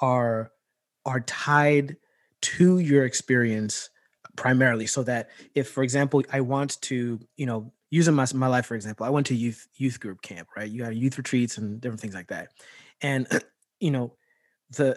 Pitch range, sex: 120-140 Hz, male